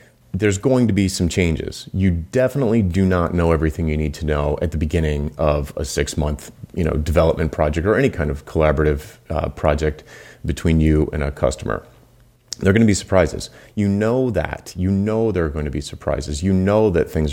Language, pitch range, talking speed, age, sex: English, 80-100 Hz, 200 wpm, 30-49, male